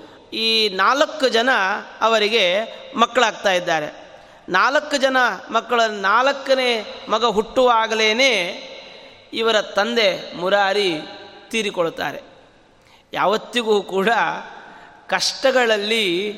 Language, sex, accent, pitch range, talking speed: Kannada, male, native, 205-270 Hz, 65 wpm